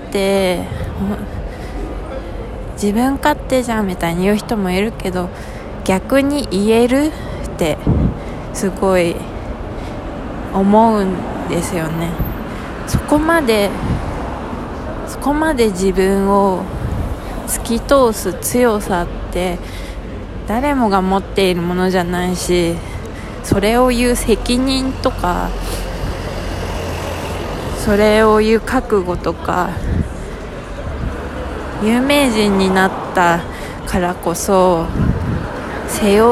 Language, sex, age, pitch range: Japanese, female, 20-39, 175-225 Hz